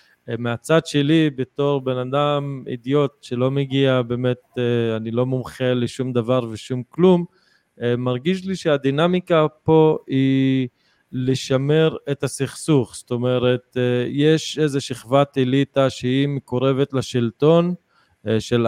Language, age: English, 20-39